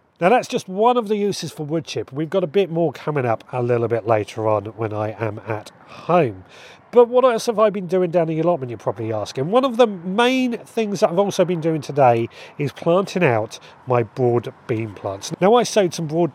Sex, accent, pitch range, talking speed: male, British, 115-180 Hz, 235 wpm